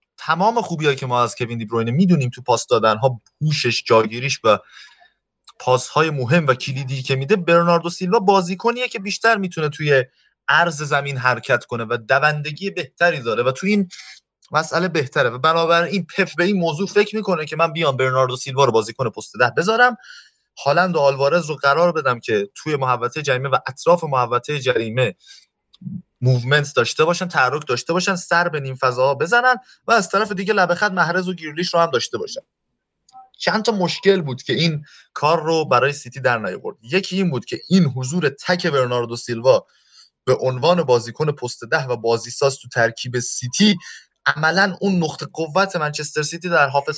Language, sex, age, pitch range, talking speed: Persian, male, 30-49, 130-180 Hz, 175 wpm